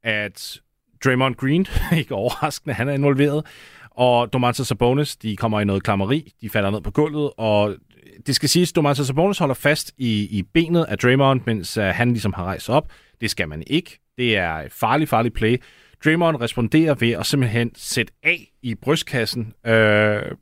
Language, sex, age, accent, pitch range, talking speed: Danish, male, 30-49, native, 105-145 Hz, 180 wpm